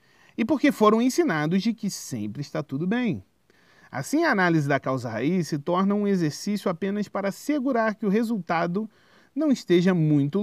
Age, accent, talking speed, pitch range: 40-59, Brazilian, 160 wpm, 130-220 Hz